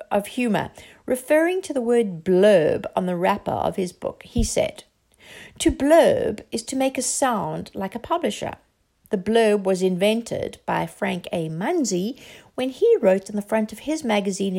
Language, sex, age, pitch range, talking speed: English, female, 60-79, 195-275 Hz, 175 wpm